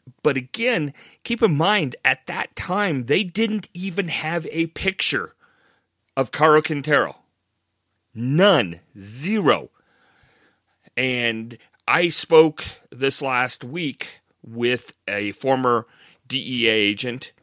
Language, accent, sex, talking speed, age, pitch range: English, American, male, 105 wpm, 40-59, 110-150 Hz